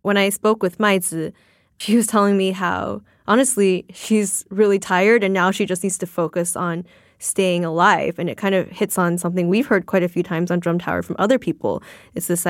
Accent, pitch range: American, 180-210 Hz